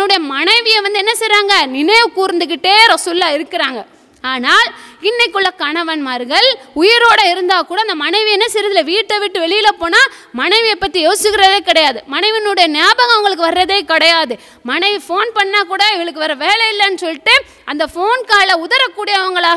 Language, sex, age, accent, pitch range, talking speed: English, female, 20-39, Indian, 310-410 Hz, 155 wpm